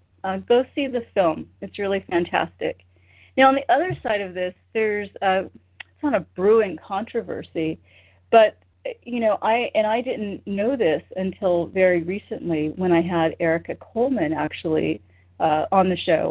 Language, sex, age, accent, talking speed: English, female, 40-59, American, 160 wpm